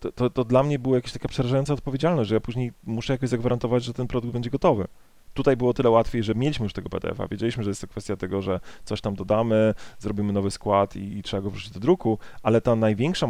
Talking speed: 235 wpm